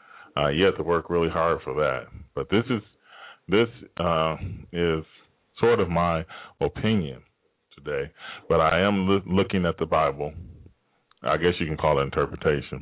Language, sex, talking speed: English, male, 165 wpm